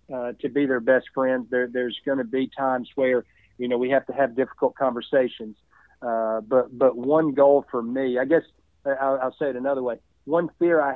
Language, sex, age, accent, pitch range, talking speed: English, male, 40-59, American, 125-140 Hz, 215 wpm